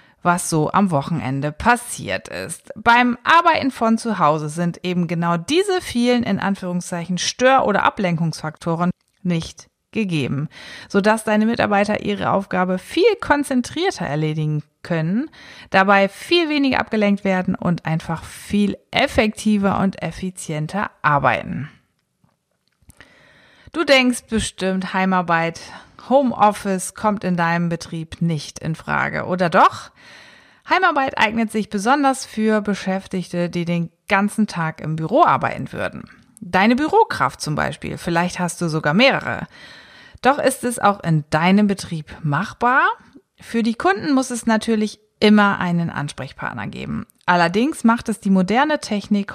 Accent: German